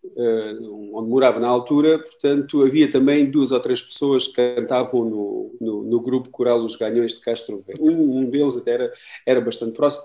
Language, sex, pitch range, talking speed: Portuguese, male, 120-165 Hz, 185 wpm